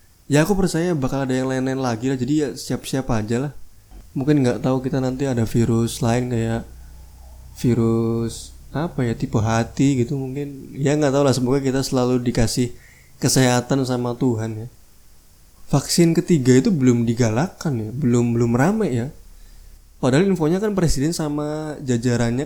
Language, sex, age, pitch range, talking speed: Indonesian, male, 20-39, 115-150 Hz, 155 wpm